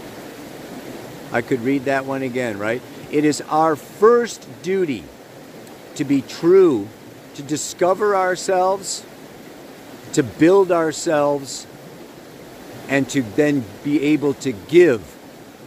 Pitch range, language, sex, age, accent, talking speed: 135-195 Hz, English, male, 50-69, American, 105 wpm